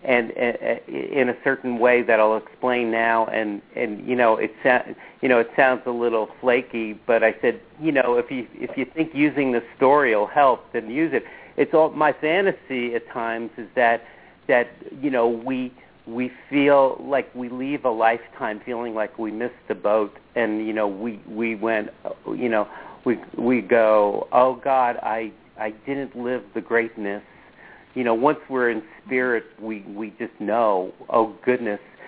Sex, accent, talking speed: male, American, 185 wpm